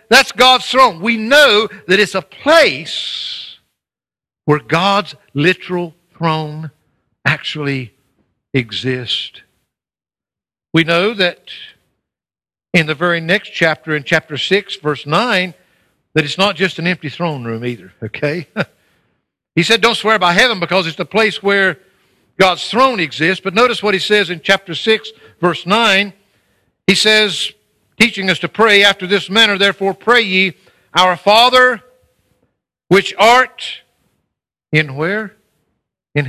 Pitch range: 150-210 Hz